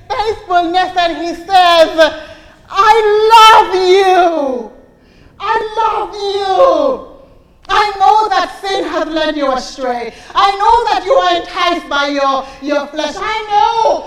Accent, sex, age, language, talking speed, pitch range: American, female, 30-49, English, 130 wpm, 295-390 Hz